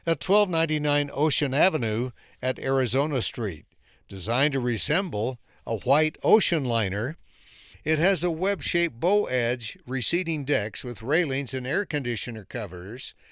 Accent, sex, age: American, male, 60-79